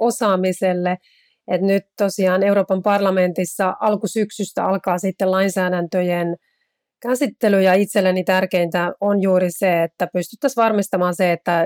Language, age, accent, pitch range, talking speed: Finnish, 30-49, native, 180-210 Hz, 115 wpm